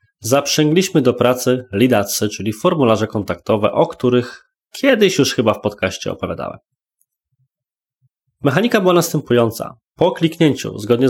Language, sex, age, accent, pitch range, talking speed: Polish, male, 20-39, native, 105-145 Hz, 115 wpm